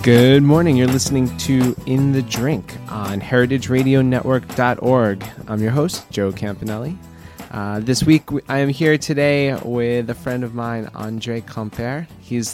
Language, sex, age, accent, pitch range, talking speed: English, male, 20-39, American, 110-130 Hz, 145 wpm